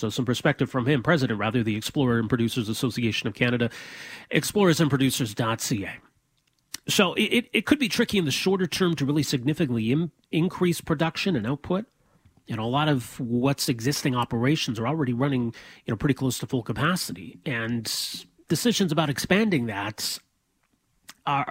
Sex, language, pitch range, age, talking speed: male, English, 130-180 Hz, 30-49, 155 wpm